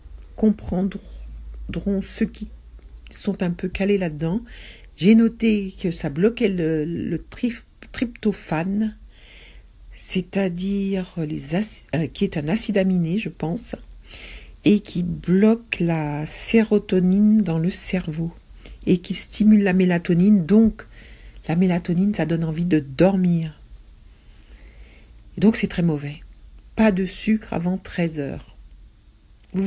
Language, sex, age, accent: English, female, 60-79, French